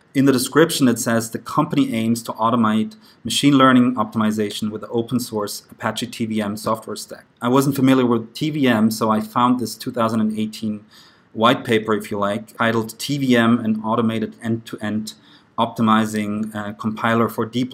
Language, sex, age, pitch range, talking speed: English, male, 30-49, 110-125 Hz, 155 wpm